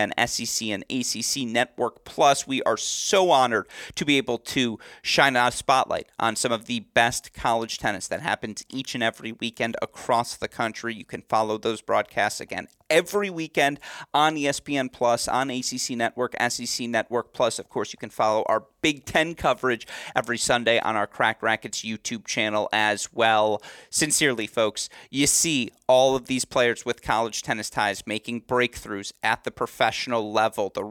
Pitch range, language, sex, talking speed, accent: 110-140 Hz, English, male, 170 wpm, American